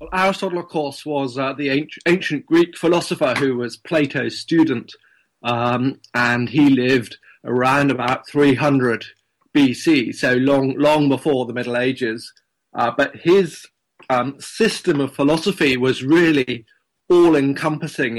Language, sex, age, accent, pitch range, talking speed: English, male, 30-49, British, 125-150 Hz, 125 wpm